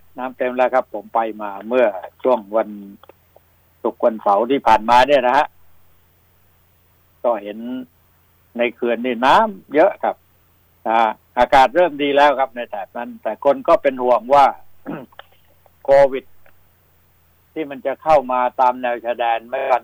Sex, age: male, 60-79